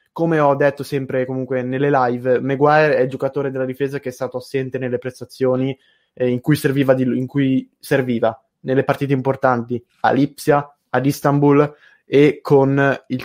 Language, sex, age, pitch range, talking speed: Italian, male, 20-39, 125-140 Hz, 165 wpm